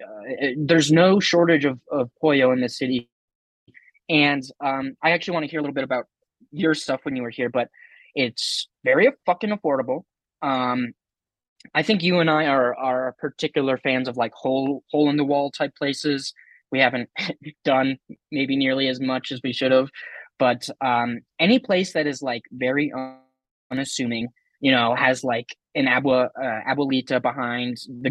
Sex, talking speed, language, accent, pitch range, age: male, 175 wpm, English, American, 125-160 Hz, 20-39